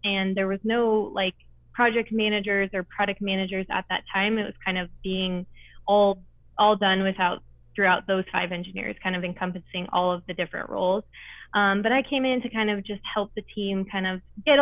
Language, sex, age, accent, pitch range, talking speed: English, female, 20-39, American, 180-205 Hz, 200 wpm